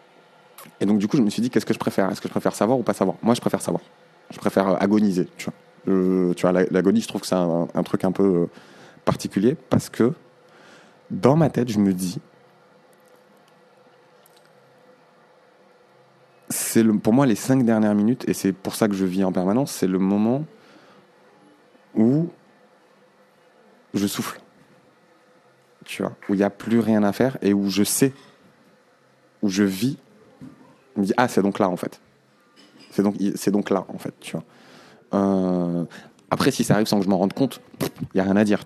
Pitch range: 95-125 Hz